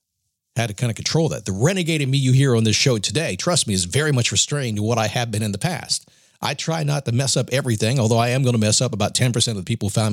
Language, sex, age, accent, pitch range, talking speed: English, male, 50-69, American, 105-135 Hz, 300 wpm